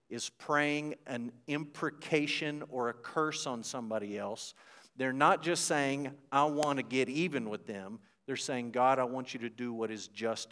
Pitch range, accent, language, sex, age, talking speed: 115-140 Hz, American, English, male, 50-69, 185 wpm